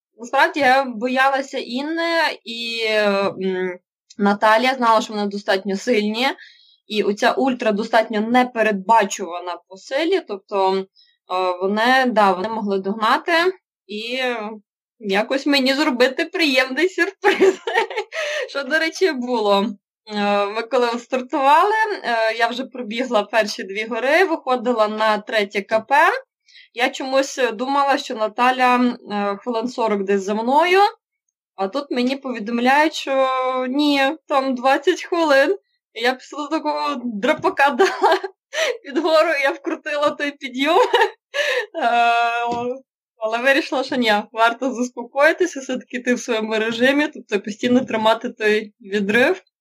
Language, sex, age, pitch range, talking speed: Ukrainian, female, 20-39, 220-295 Hz, 115 wpm